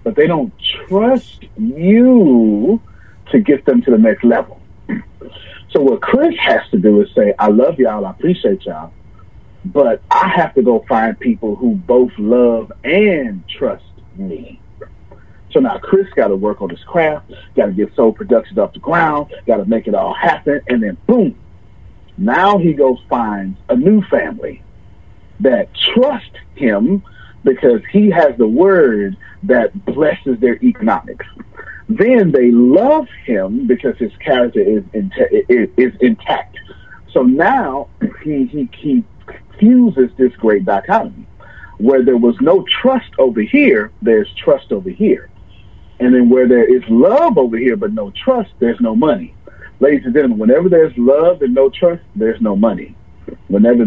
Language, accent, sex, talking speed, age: English, American, male, 155 wpm, 40-59